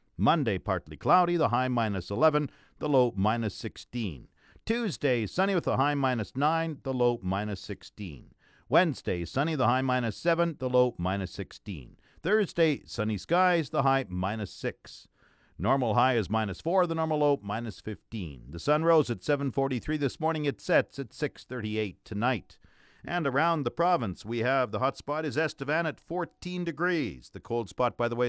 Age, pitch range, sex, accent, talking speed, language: 50-69, 110-150 Hz, male, American, 170 wpm, English